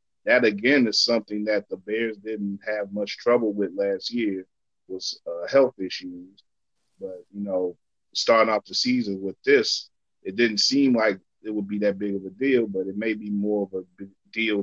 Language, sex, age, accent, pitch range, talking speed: English, male, 30-49, American, 100-120 Hz, 195 wpm